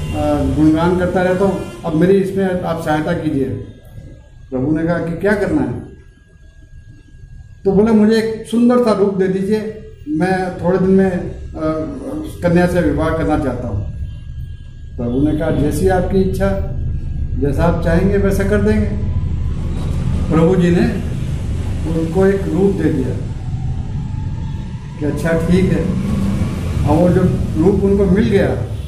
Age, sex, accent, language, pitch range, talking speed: 50-69, male, native, Hindi, 120-190 Hz, 140 wpm